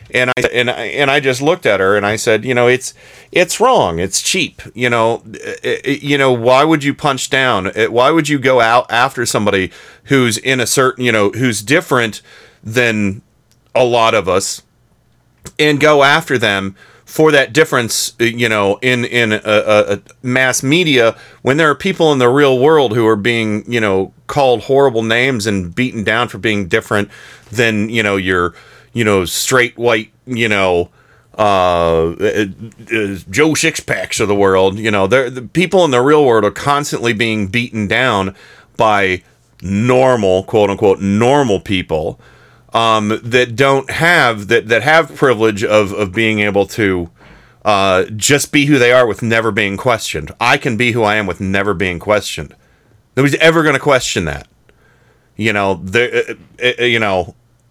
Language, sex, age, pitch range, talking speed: English, male, 40-59, 105-130 Hz, 175 wpm